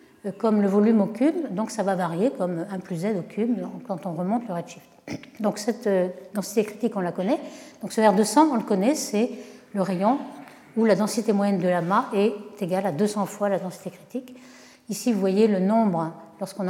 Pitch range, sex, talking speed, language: 190-240 Hz, female, 200 wpm, French